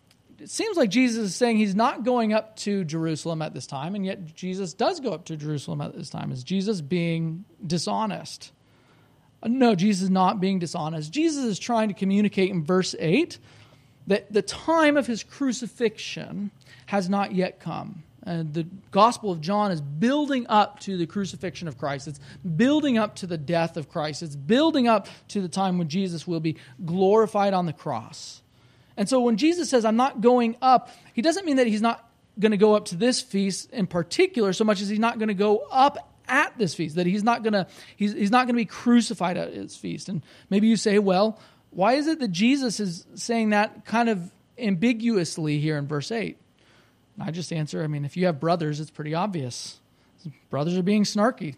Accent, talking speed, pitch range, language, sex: American, 200 wpm, 165-225 Hz, English, male